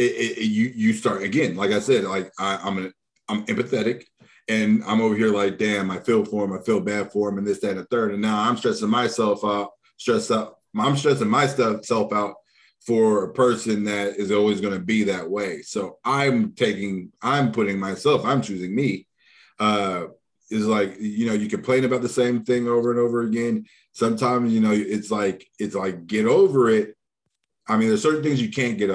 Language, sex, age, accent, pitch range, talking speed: English, male, 30-49, American, 100-115 Hz, 215 wpm